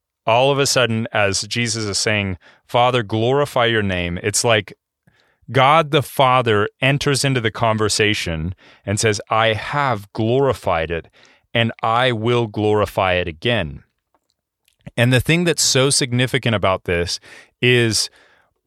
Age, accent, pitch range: 30-49, American, 100-125 Hz